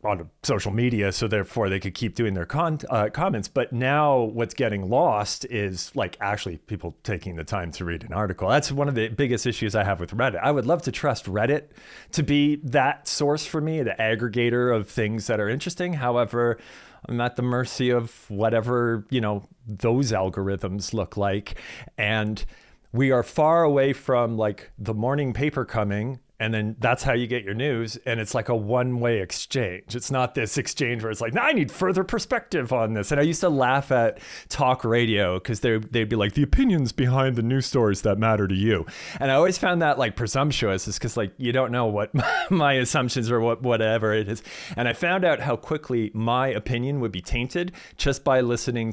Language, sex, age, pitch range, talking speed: English, male, 40-59, 105-135 Hz, 205 wpm